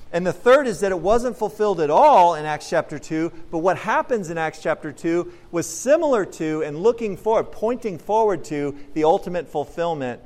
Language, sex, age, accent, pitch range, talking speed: English, male, 40-59, American, 150-205 Hz, 195 wpm